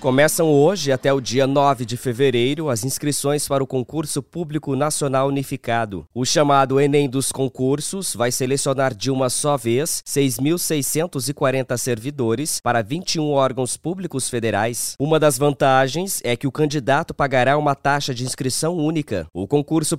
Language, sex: English, male